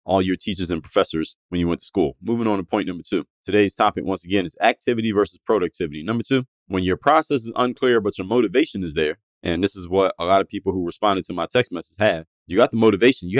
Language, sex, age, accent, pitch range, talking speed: English, male, 30-49, American, 90-110 Hz, 250 wpm